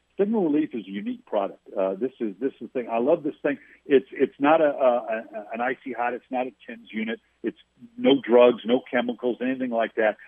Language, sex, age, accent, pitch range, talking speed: English, male, 60-79, American, 120-170 Hz, 230 wpm